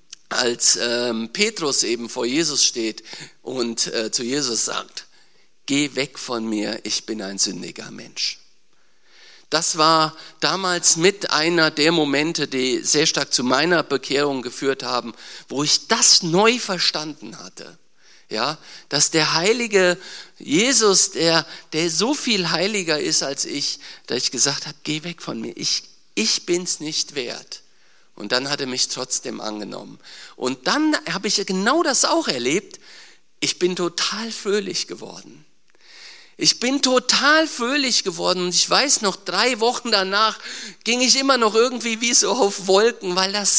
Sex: male